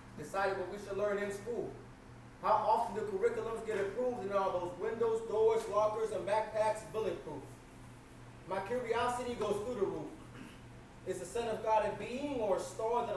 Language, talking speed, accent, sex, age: English, 180 wpm, American, male, 30-49